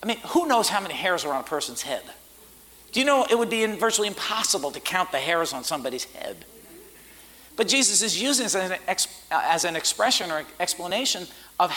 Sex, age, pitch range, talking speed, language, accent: male, 50-69, 205-275 Hz, 200 wpm, English, American